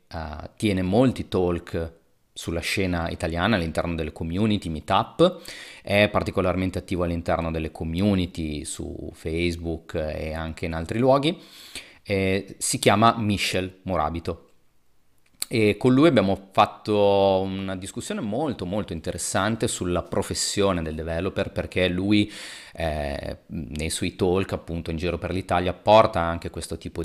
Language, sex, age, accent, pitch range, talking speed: Italian, male, 30-49, native, 85-110 Hz, 130 wpm